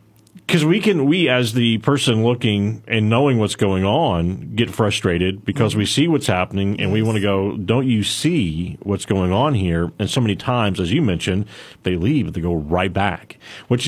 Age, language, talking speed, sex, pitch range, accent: 40-59, English, 205 wpm, male, 100-130 Hz, American